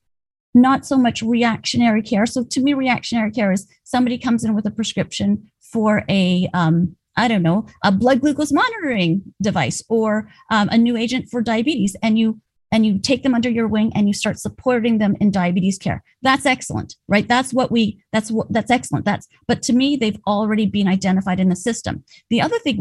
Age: 30-49